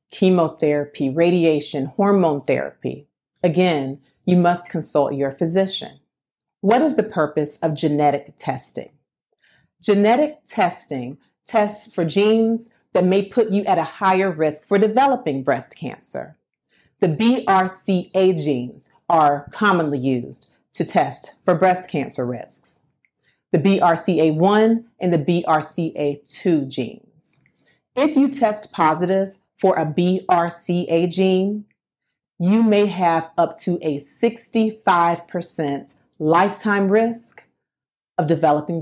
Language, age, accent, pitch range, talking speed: English, 40-59, American, 155-200 Hz, 110 wpm